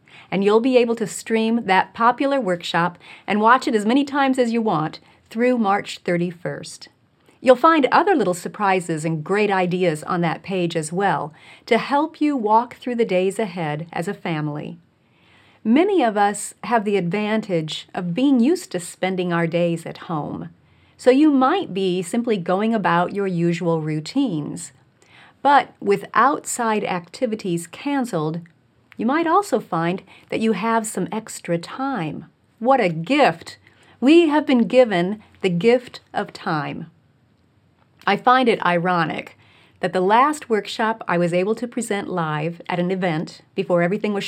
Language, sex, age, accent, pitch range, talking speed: English, female, 40-59, American, 175-240 Hz, 155 wpm